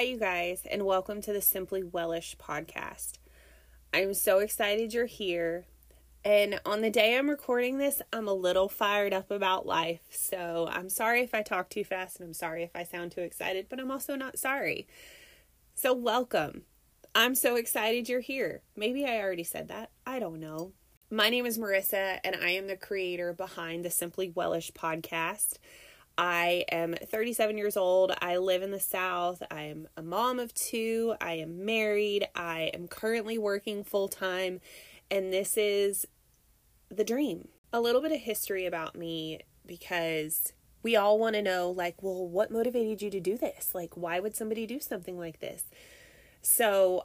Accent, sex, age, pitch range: American, female, 20-39, 175-225 Hz